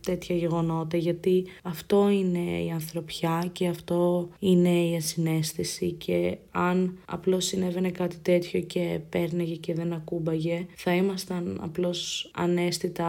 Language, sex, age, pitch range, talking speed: Greek, female, 20-39, 165-185 Hz, 125 wpm